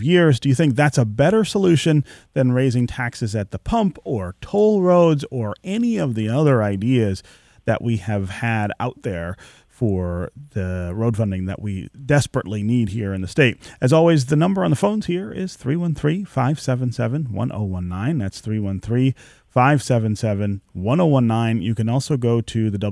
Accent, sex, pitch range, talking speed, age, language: American, male, 105-140 Hz, 155 wpm, 30-49, English